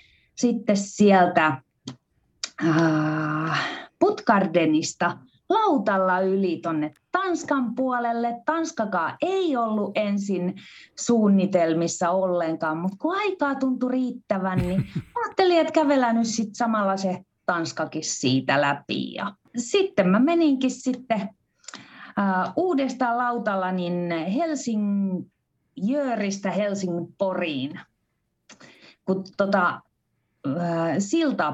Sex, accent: female, native